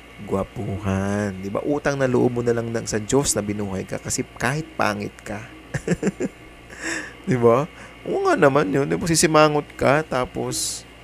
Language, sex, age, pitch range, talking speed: English, male, 20-39, 105-130 Hz, 170 wpm